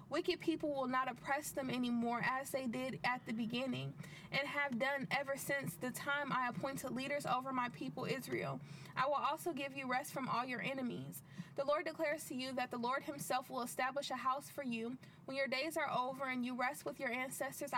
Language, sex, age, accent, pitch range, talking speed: English, female, 20-39, American, 245-280 Hz, 215 wpm